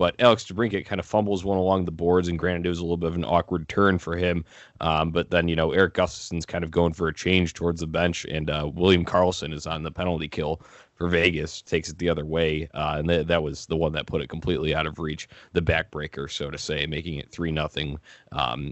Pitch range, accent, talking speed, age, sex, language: 80-90 Hz, American, 255 wpm, 20-39, male, English